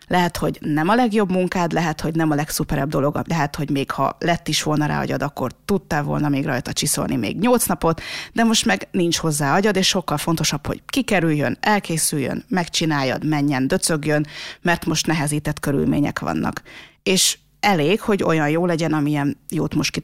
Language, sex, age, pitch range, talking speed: Hungarian, female, 30-49, 150-180 Hz, 180 wpm